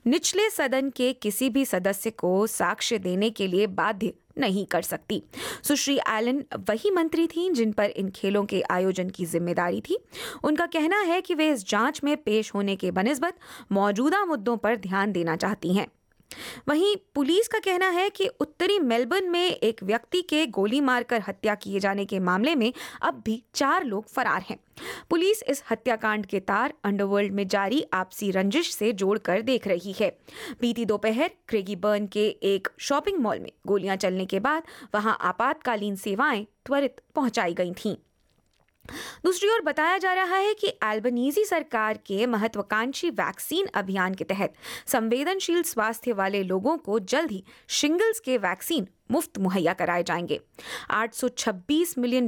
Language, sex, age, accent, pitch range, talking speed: Hindi, female, 20-39, native, 200-300 Hz, 160 wpm